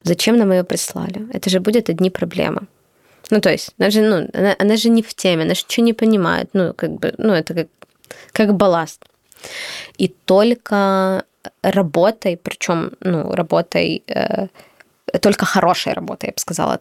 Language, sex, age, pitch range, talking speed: Ukrainian, female, 20-39, 175-220 Hz, 165 wpm